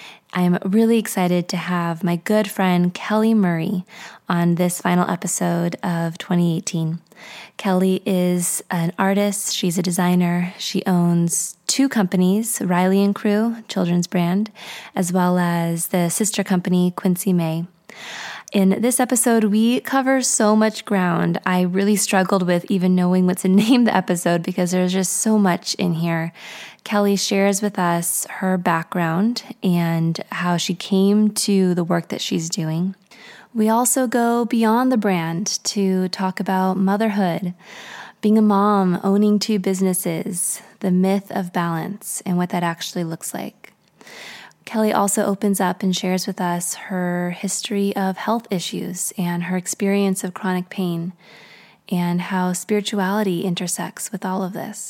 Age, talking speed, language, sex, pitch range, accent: 20-39, 150 wpm, English, female, 180-210 Hz, American